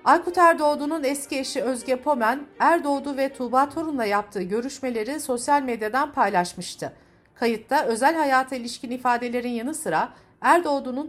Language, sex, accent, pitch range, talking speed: Turkish, female, native, 215-300 Hz, 125 wpm